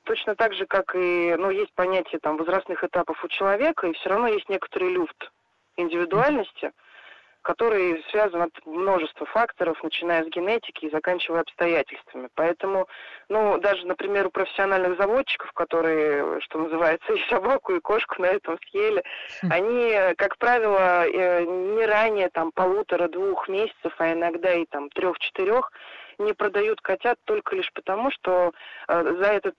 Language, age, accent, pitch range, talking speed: Russian, 20-39, native, 170-215 Hz, 145 wpm